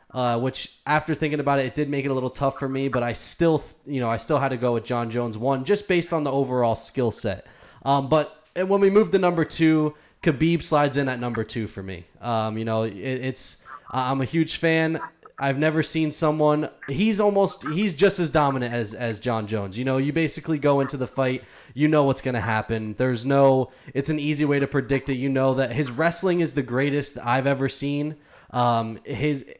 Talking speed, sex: 230 wpm, male